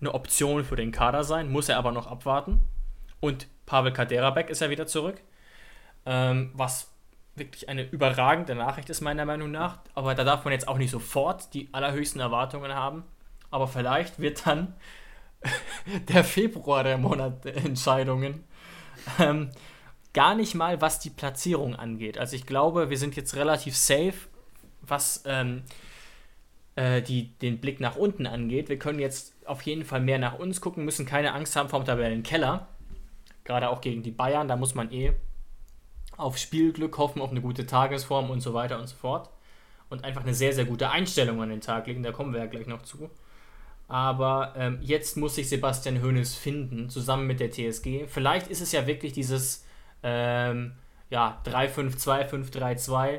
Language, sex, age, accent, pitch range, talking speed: German, male, 20-39, German, 125-150 Hz, 170 wpm